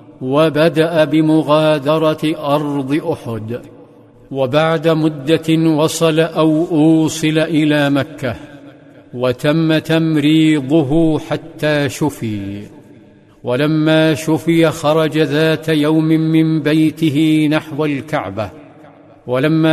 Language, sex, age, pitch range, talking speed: Arabic, male, 50-69, 150-160 Hz, 75 wpm